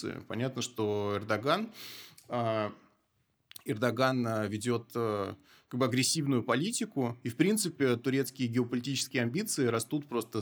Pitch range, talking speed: 115-145 Hz, 110 wpm